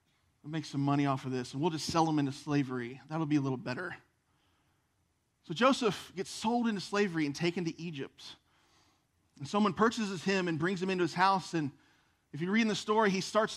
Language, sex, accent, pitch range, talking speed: English, male, American, 145-195 Hz, 210 wpm